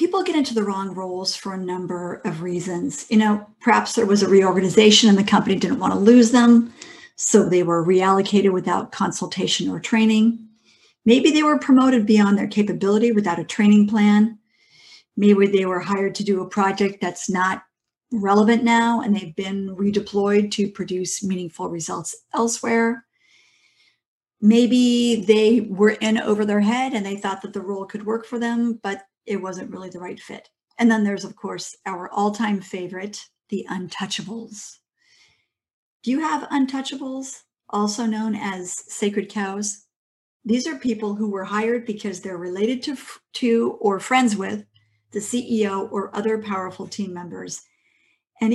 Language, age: English, 50-69